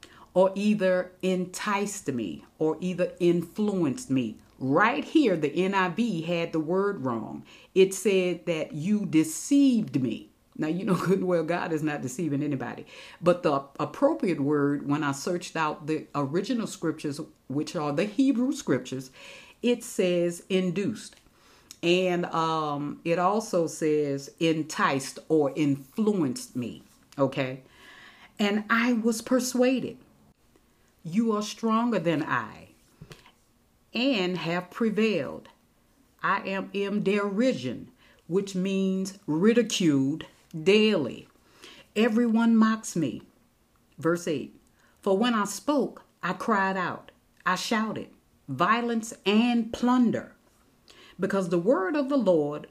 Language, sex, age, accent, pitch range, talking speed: English, female, 50-69, American, 160-220 Hz, 120 wpm